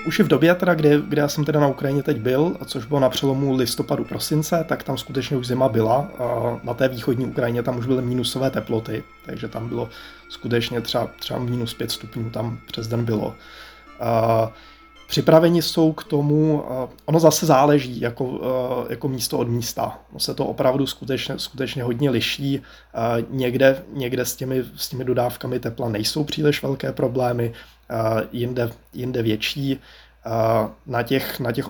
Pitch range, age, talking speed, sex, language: 115-135 Hz, 20-39, 165 wpm, male, Czech